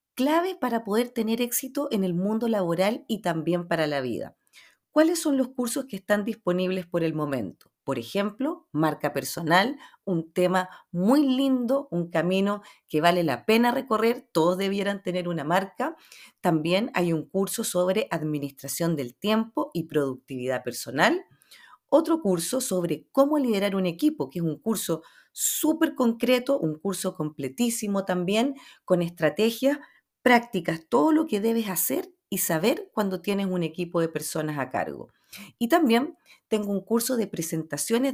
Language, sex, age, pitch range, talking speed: Spanish, female, 40-59, 170-245 Hz, 155 wpm